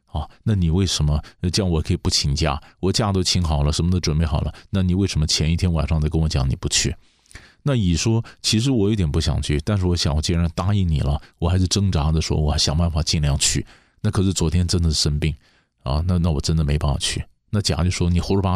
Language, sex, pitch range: Chinese, male, 80-105 Hz